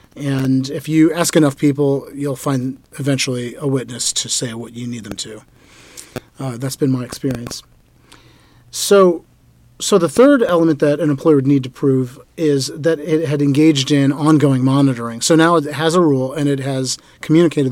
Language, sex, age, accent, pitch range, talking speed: English, male, 40-59, American, 130-150 Hz, 180 wpm